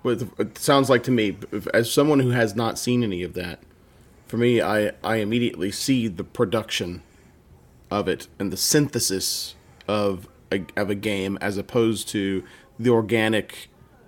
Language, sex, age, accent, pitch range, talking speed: English, male, 30-49, American, 100-125 Hz, 160 wpm